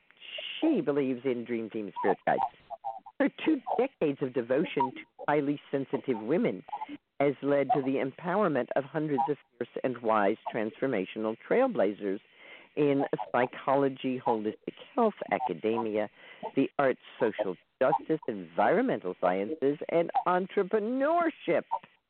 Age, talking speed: 50-69, 115 wpm